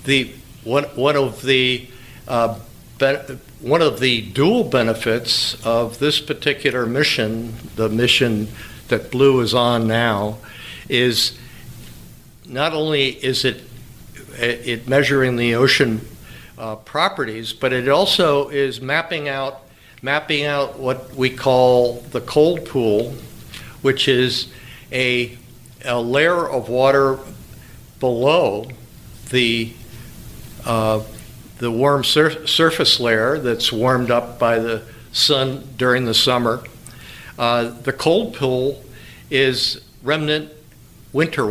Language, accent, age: English, American, 60-79